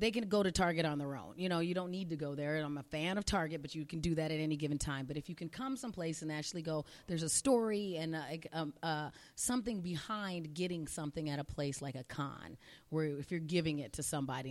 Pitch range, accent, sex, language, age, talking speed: 150-180 Hz, American, female, English, 30-49, 250 wpm